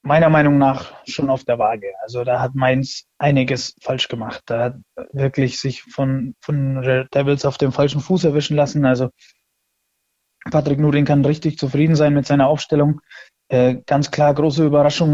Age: 20-39